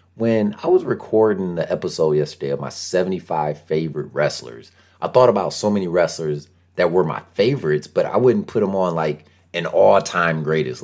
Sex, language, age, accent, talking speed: male, English, 30-49, American, 175 wpm